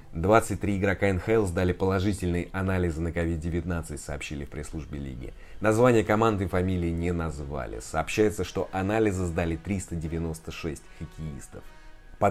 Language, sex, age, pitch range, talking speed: Russian, male, 20-39, 80-105 Hz, 120 wpm